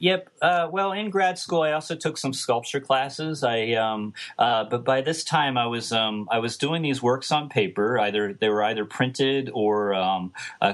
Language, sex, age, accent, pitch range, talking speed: English, male, 30-49, American, 95-120 Hz, 205 wpm